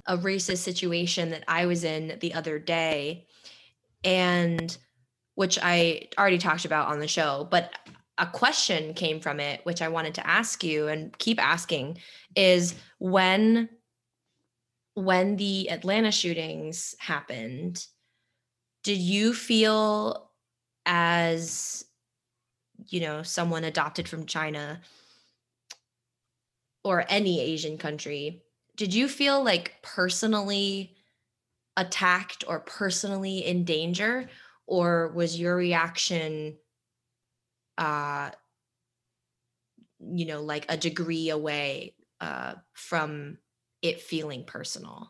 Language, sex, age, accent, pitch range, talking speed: English, female, 20-39, American, 150-185 Hz, 110 wpm